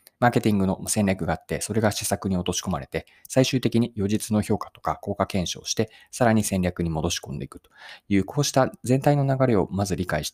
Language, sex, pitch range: Japanese, male, 90-130 Hz